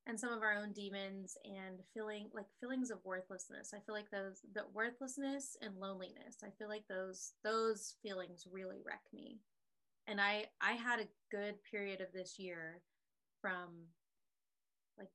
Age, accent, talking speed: 20-39, American, 160 wpm